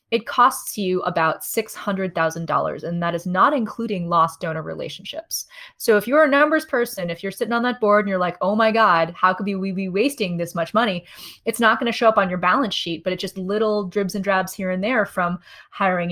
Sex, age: female, 20-39